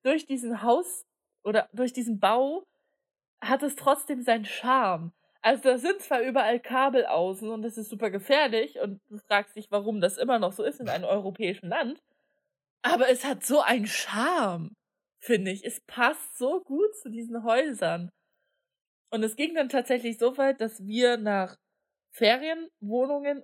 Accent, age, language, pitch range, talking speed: German, 20-39, German, 195-260 Hz, 165 wpm